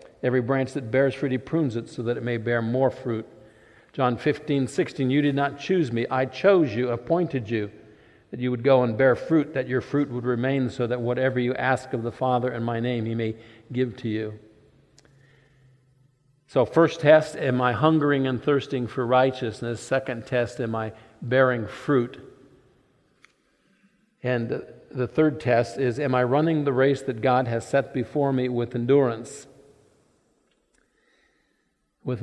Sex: male